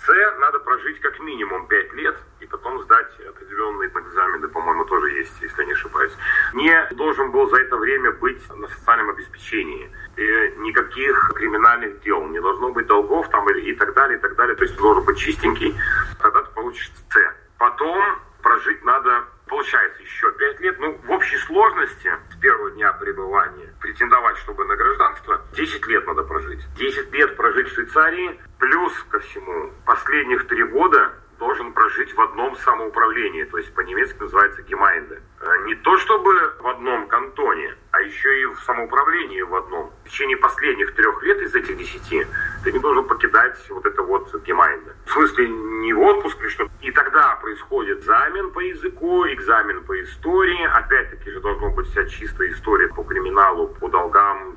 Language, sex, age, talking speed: Russian, male, 40-59, 165 wpm